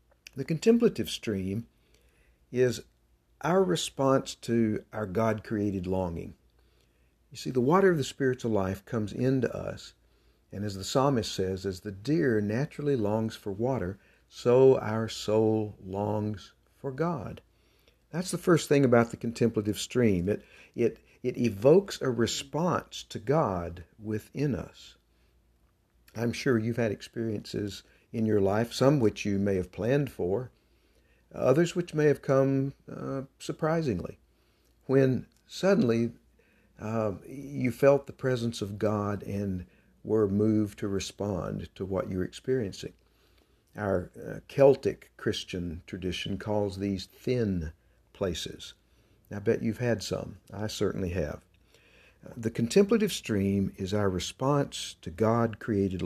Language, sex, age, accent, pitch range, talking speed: English, male, 60-79, American, 95-130 Hz, 130 wpm